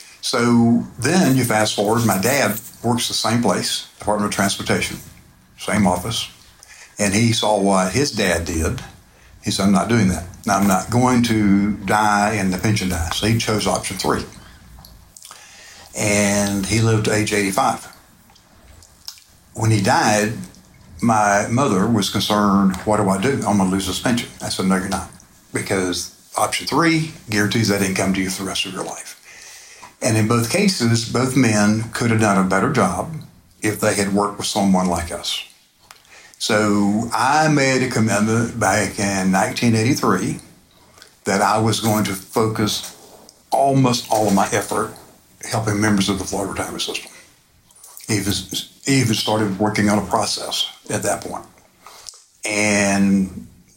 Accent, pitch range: American, 95-110 Hz